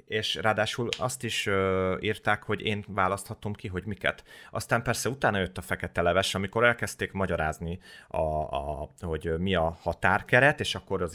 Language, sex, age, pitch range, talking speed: Hungarian, male, 30-49, 85-110 Hz, 165 wpm